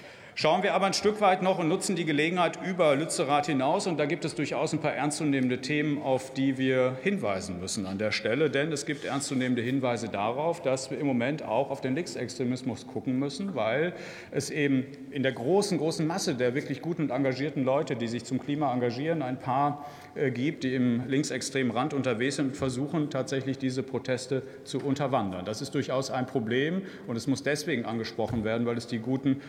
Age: 40-59